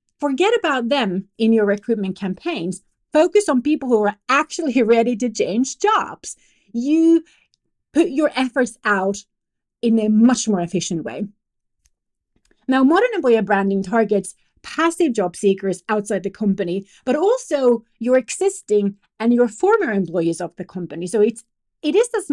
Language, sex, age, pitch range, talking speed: English, female, 40-59, 205-300 Hz, 145 wpm